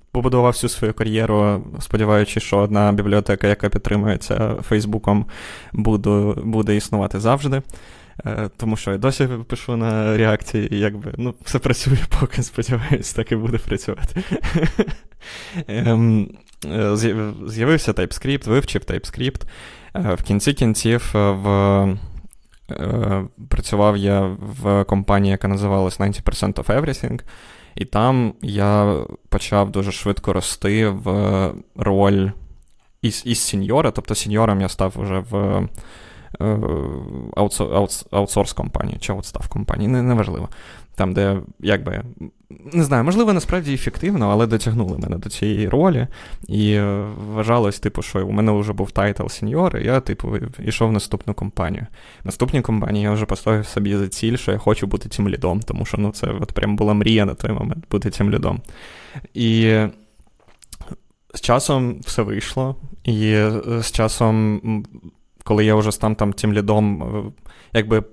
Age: 20-39